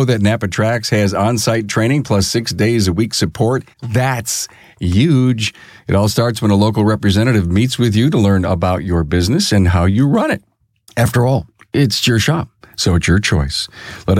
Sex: male